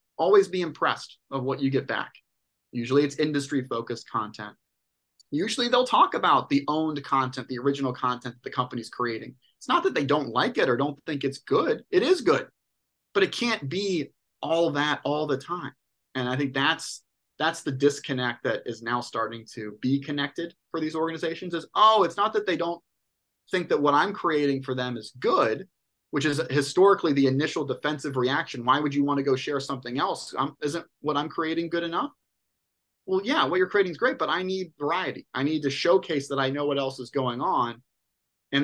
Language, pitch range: English, 130-160 Hz